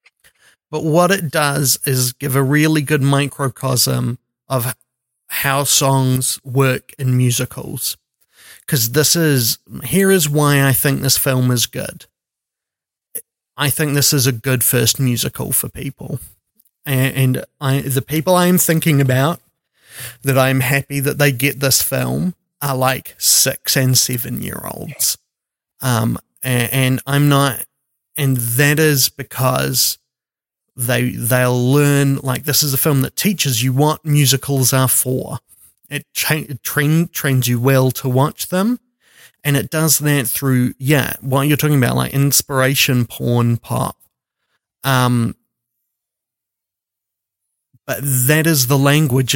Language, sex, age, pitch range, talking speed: English, male, 30-49, 125-145 Hz, 140 wpm